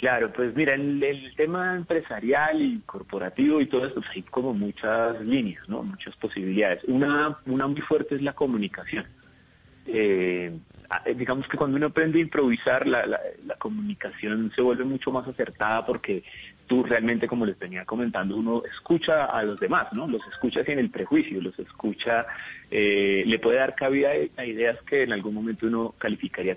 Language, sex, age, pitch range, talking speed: Spanish, male, 30-49, 110-145 Hz, 175 wpm